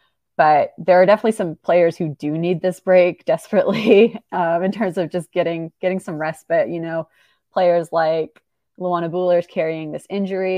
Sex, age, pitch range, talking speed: female, 20-39, 160-185 Hz, 175 wpm